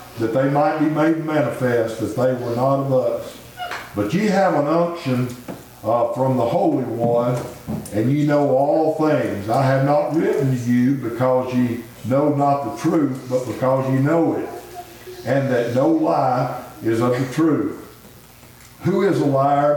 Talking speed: 170 wpm